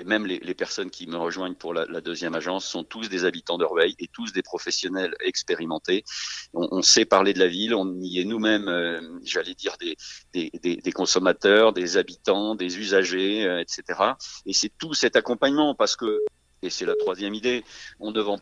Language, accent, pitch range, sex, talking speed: French, French, 95-140 Hz, male, 205 wpm